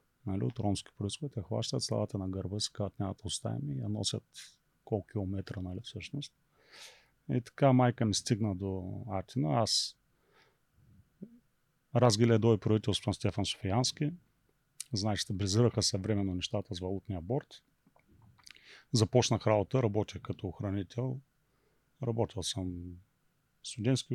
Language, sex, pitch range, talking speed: Bulgarian, male, 105-135 Hz, 115 wpm